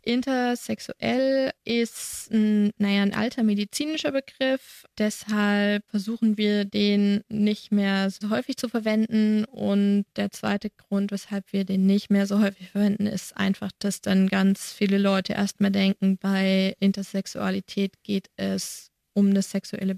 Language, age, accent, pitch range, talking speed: German, 20-39, German, 195-215 Hz, 140 wpm